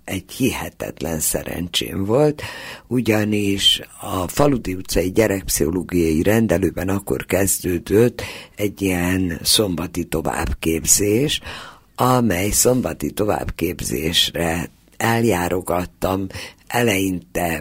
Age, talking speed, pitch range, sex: 60-79, 70 wpm, 85-110 Hz, female